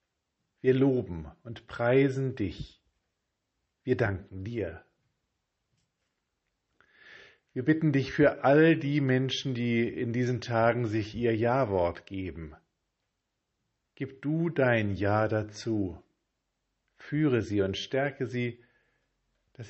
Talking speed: 105 wpm